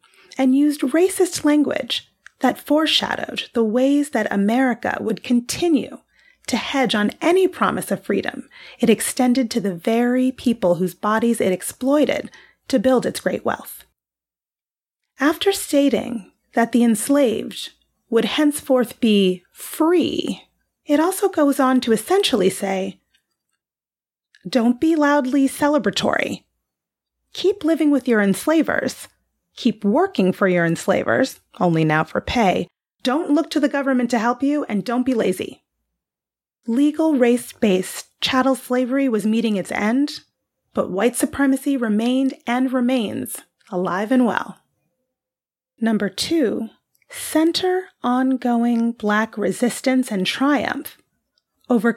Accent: American